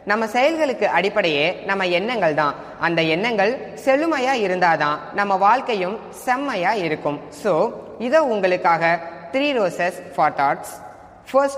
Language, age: Tamil, 20-39